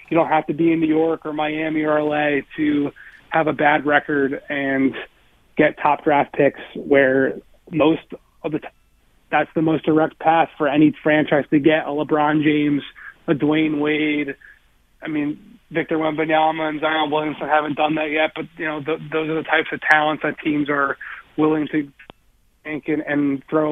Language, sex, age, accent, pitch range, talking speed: English, male, 30-49, American, 145-160 Hz, 185 wpm